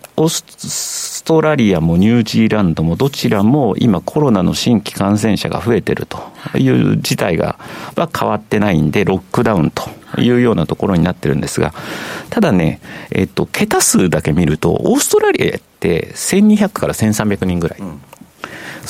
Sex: male